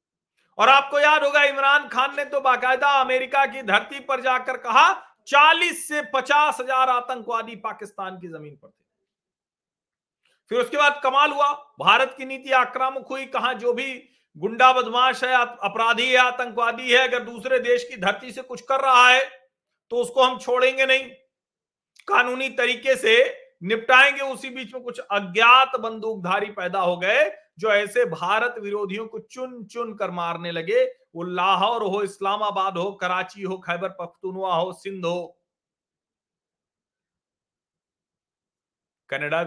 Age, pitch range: 40-59, 185-265 Hz